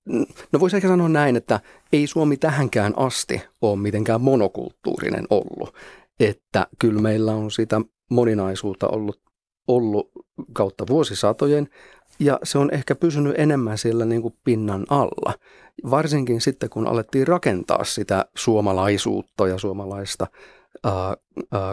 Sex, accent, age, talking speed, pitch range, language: male, native, 40-59, 125 wpm, 100-125 Hz, Finnish